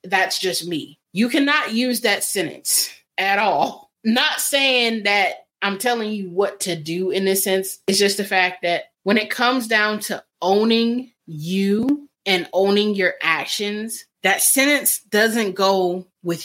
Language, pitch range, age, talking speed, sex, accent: English, 175-230 Hz, 20-39, 155 wpm, female, American